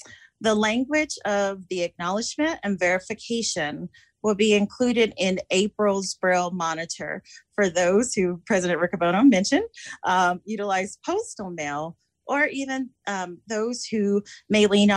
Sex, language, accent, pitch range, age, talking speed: female, English, American, 175-215 Hz, 30-49, 125 wpm